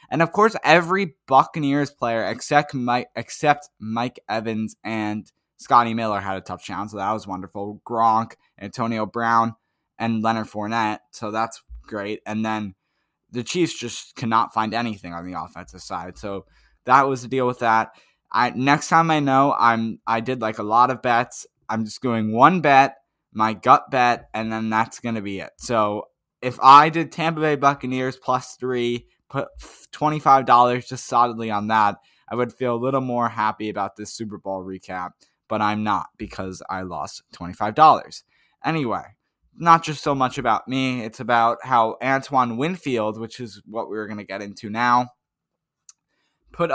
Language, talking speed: English, 170 wpm